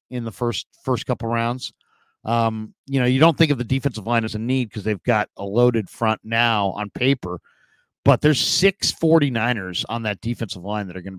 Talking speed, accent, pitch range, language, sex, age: 210 wpm, American, 110-130 Hz, English, male, 50-69